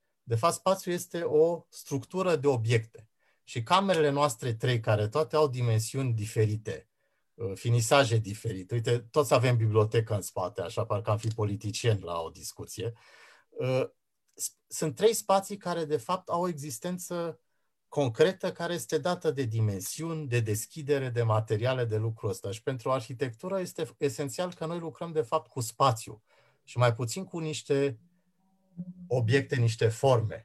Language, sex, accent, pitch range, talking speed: English, male, Romanian, 115-160 Hz, 150 wpm